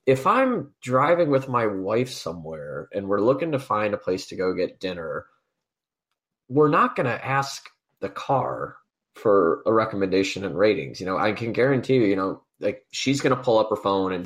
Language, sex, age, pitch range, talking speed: English, male, 20-39, 95-120 Hz, 200 wpm